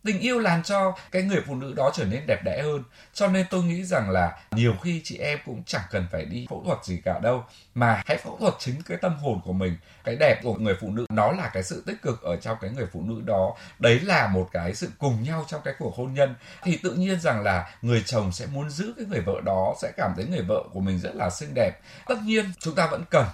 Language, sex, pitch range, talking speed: Vietnamese, male, 95-150 Hz, 275 wpm